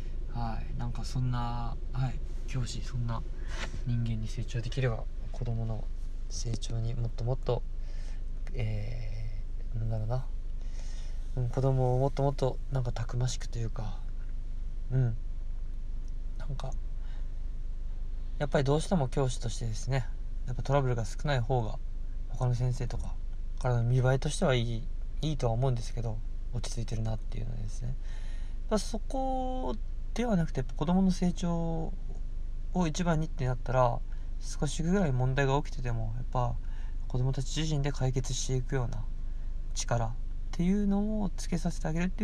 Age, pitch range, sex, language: 20-39, 115-145 Hz, male, Japanese